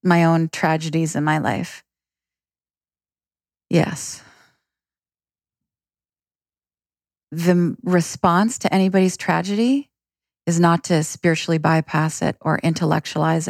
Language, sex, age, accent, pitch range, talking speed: English, female, 30-49, American, 160-185 Hz, 95 wpm